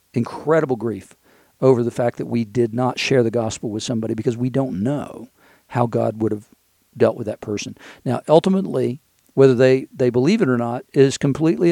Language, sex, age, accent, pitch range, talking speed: English, male, 50-69, American, 115-145 Hz, 190 wpm